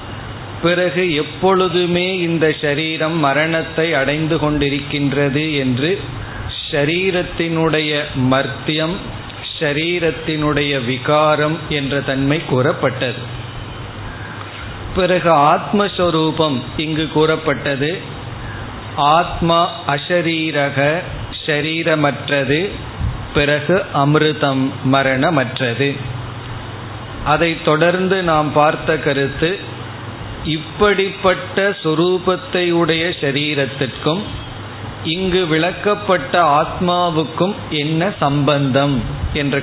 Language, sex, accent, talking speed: Tamil, male, native, 60 wpm